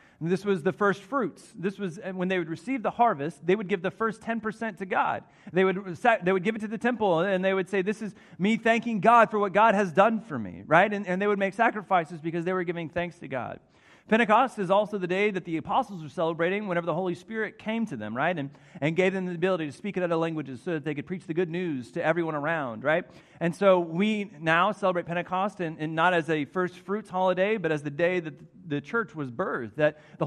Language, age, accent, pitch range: English, 30-49, American, 160-200 Hz